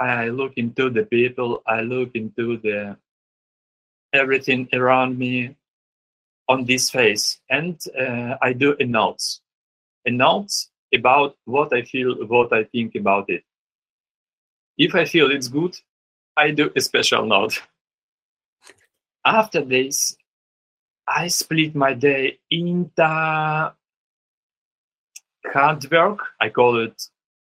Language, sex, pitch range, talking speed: English, male, 120-150 Hz, 120 wpm